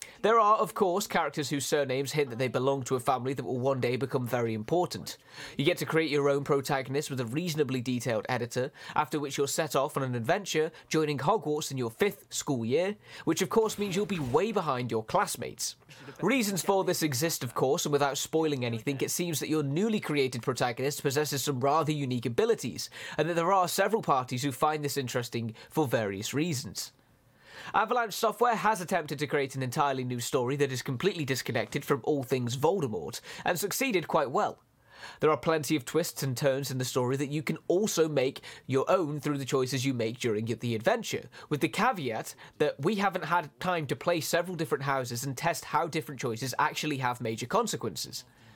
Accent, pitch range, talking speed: British, 130-170 Hz, 200 wpm